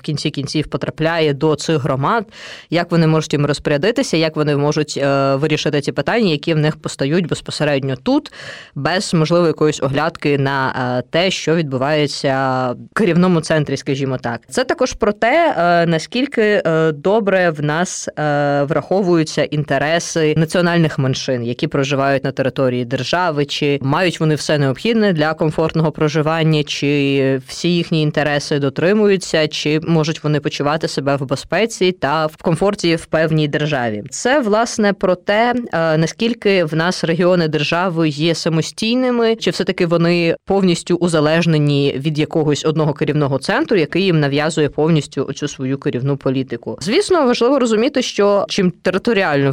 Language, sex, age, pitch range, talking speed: Ukrainian, female, 20-39, 145-180 Hz, 140 wpm